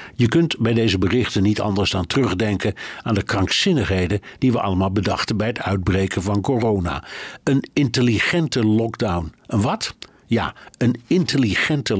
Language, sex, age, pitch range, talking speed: Dutch, male, 60-79, 100-130 Hz, 145 wpm